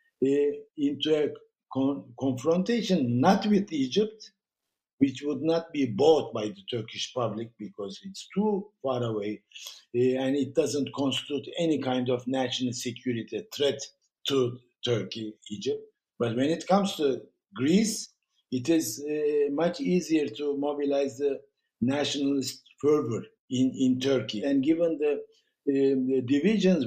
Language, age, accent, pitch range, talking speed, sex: English, 60-79, Turkish, 120-160 Hz, 135 wpm, male